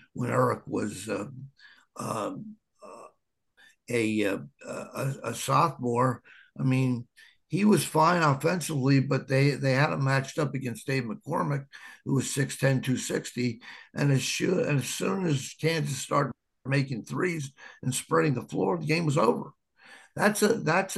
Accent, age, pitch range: American, 60-79, 115-145 Hz